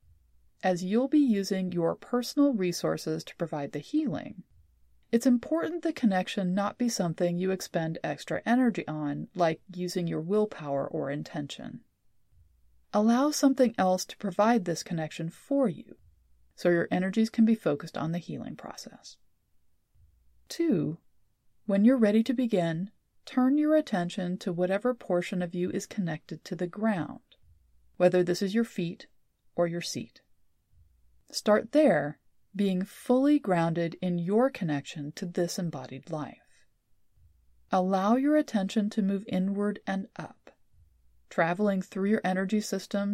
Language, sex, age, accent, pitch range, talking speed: English, female, 30-49, American, 145-210 Hz, 140 wpm